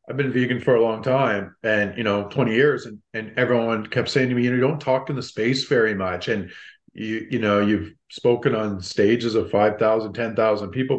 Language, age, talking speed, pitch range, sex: English, 40-59, 225 wpm, 130-165 Hz, male